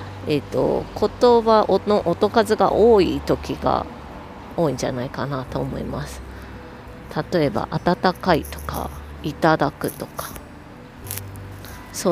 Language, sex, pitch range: Japanese, female, 130-210 Hz